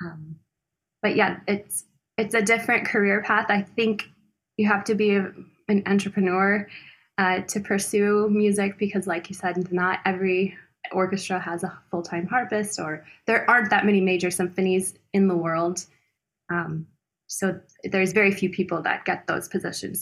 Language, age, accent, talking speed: English, 20-39, American, 155 wpm